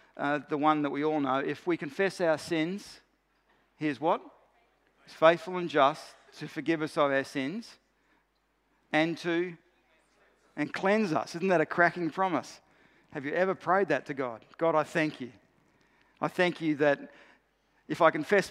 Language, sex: English, male